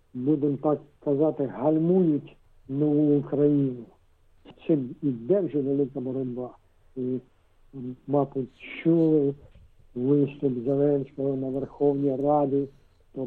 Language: Ukrainian